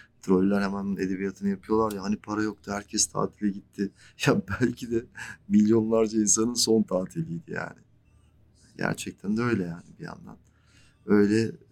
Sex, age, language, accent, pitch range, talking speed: male, 40-59, Turkish, native, 95-115 Hz, 135 wpm